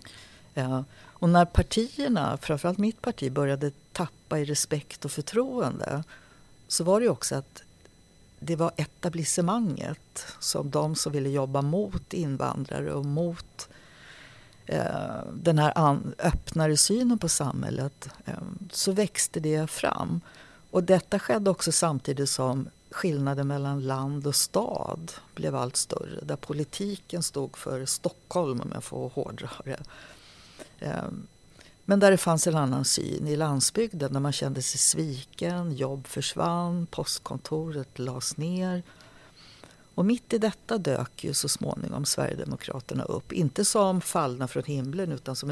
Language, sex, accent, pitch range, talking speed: Swedish, female, native, 135-180 Hz, 135 wpm